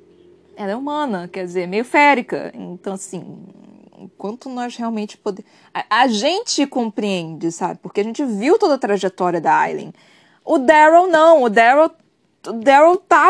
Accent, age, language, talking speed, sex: Brazilian, 20-39, Portuguese, 155 wpm, female